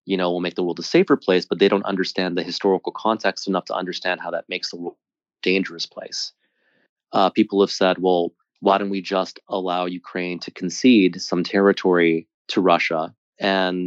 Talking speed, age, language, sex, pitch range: 195 wpm, 30-49, English, male, 85-95 Hz